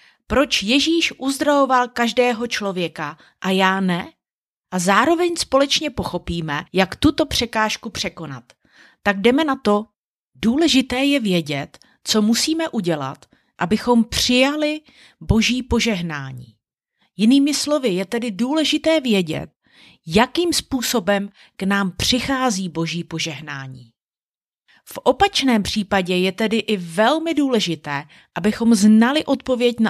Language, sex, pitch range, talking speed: Czech, female, 180-270 Hz, 110 wpm